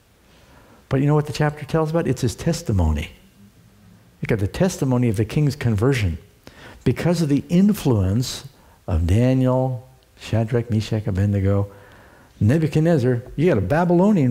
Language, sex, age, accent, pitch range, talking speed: English, male, 60-79, American, 100-145 Hz, 140 wpm